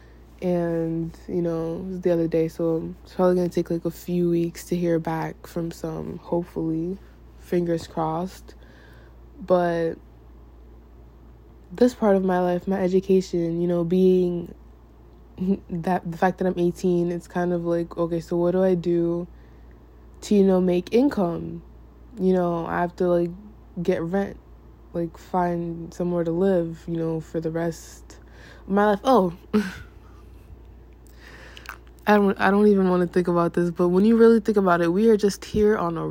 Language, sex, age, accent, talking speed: English, female, 20-39, American, 170 wpm